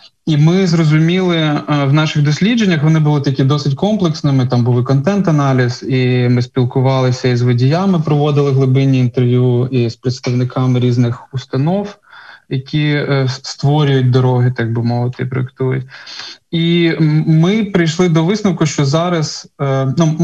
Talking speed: 130 wpm